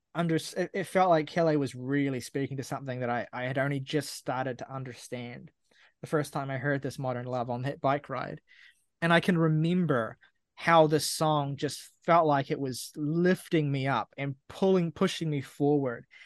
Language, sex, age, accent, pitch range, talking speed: English, male, 20-39, Australian, 145-175 Hz, 190 wpm